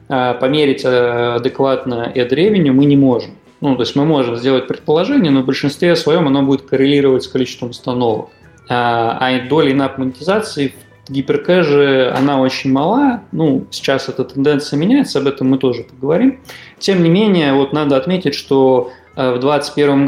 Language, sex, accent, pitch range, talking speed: Russian, male, native, 130-145 Hz, 150 wpm